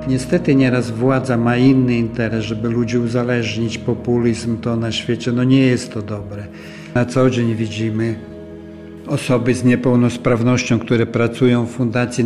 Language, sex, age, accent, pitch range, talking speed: Polish, male, 50-69, native, 115-125 Hz, 140 wpm